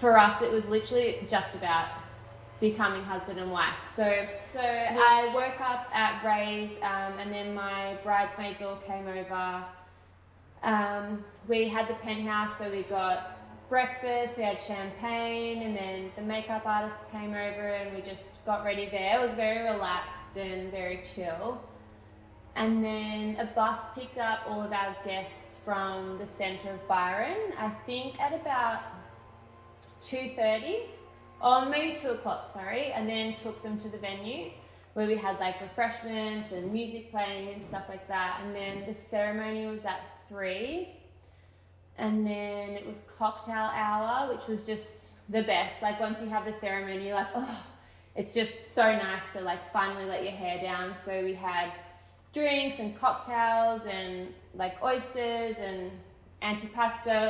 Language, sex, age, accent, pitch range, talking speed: English, female, 20-39, Australian, 190-225 Hz, 155 wpm